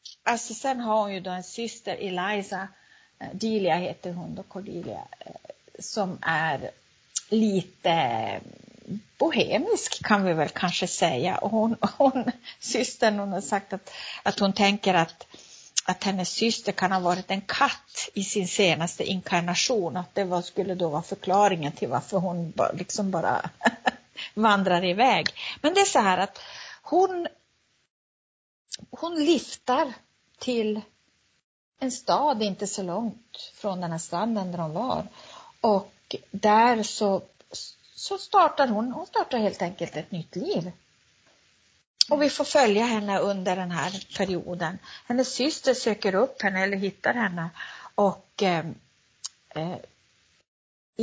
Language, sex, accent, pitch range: Swedish, female, native, 185-230 Hz